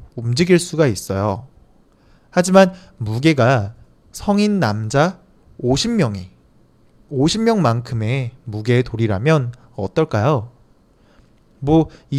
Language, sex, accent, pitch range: Chinese, male, Korean, 115-180 Hz